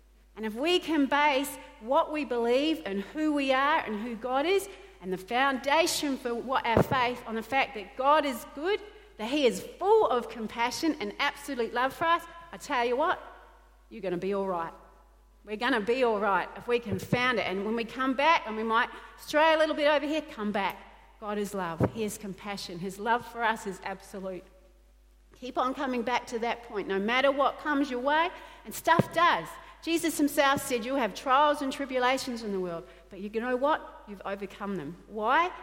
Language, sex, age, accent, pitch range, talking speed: English, female, 40-59, Australian, 195-280 Hz, 210 wpm